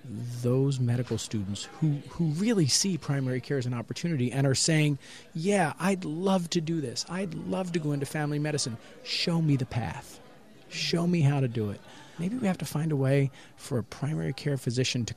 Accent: American